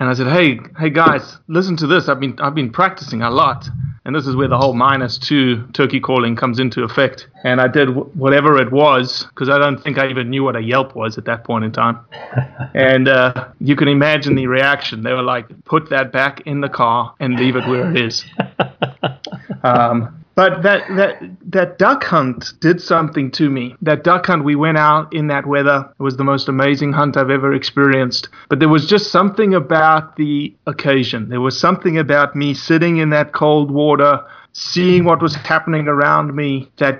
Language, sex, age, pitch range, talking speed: English, male, 30-49, 130-155 Hz, 205 wpm